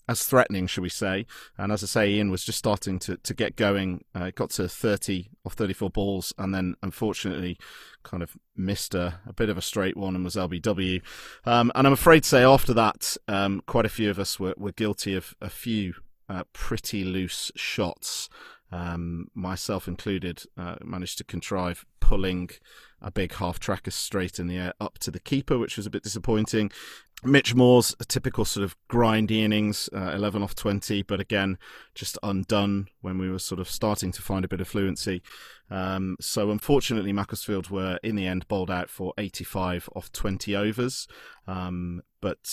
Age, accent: 30-49, British